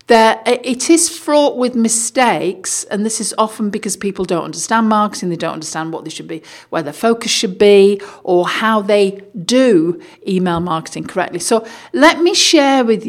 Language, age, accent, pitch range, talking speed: English, 50-69, British, 185-235 Hz, 180 wpm